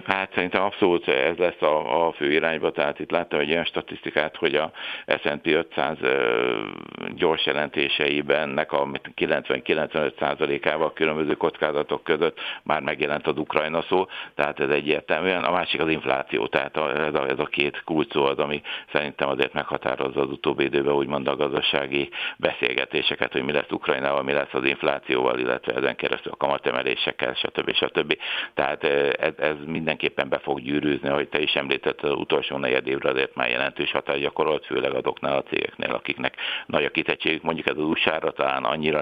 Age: 60-79